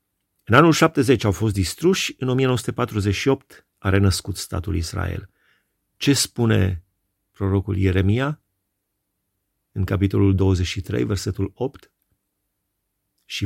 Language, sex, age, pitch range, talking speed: Romanian, male, 40-59, 95-115 Hz, 100 wpm